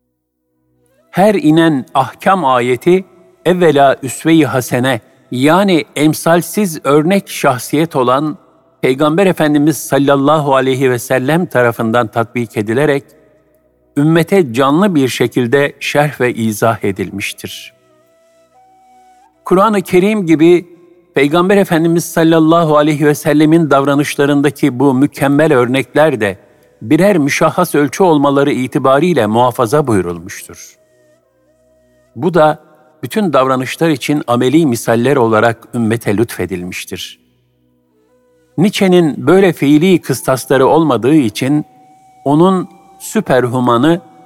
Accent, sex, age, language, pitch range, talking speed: native, male, 50-69, Turkish, 125-165 Hz, 90 wpm